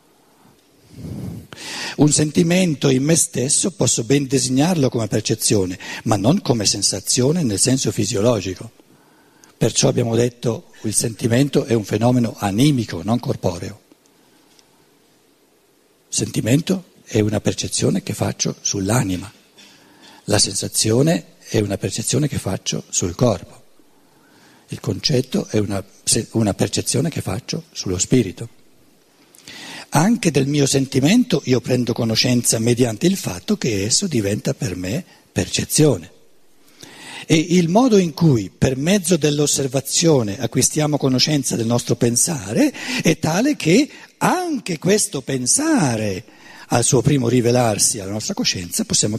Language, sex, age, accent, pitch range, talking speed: Italian, male, 60-79, native, 115-160 Hz, 120 wpm